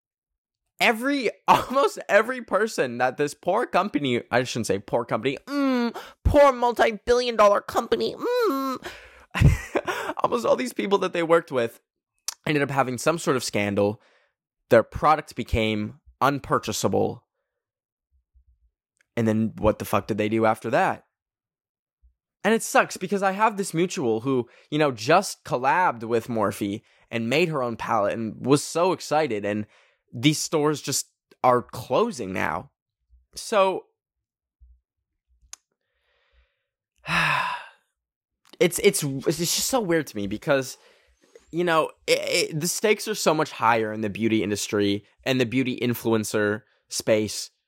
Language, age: English, 10-29